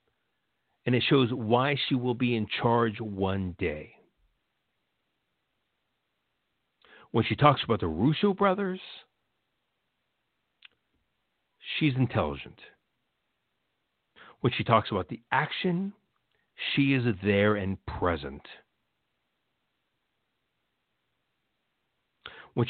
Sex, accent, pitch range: male, American, 100-140 Hz